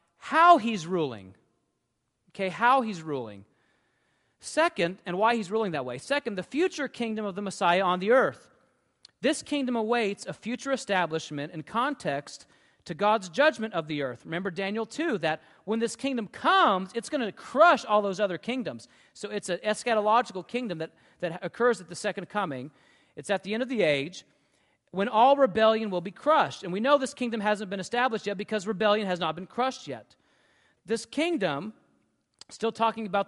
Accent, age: American, 40-59